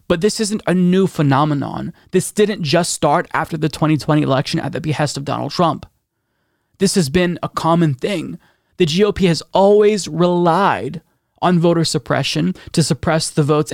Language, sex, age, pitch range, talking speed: English, male, 20-39, 150-175 Hz, 165 wpm